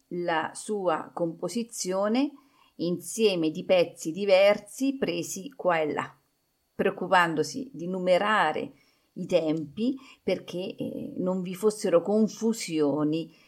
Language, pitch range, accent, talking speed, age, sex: Italian, 150-210 Hz, native, 100 wpm, 50-69, female